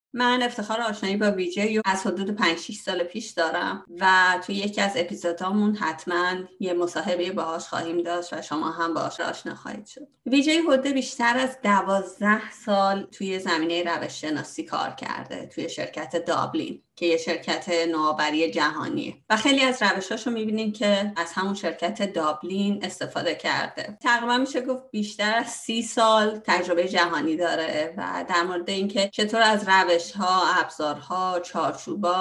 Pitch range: 170-220 Hz